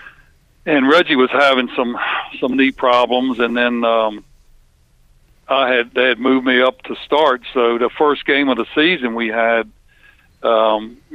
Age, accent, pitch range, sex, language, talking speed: 60-79, American, 115-130 Hz, male, English, 160 wpm